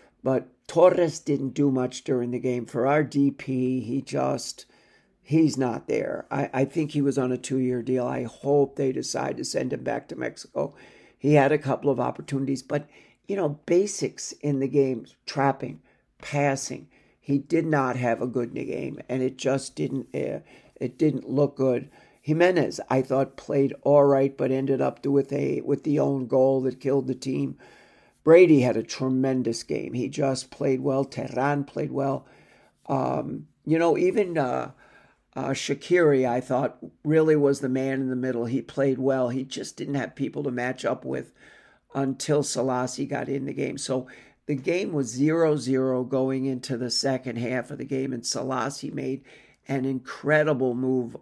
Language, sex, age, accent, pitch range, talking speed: English, male, 60-79, American, 130-145 Hz, 180 wpm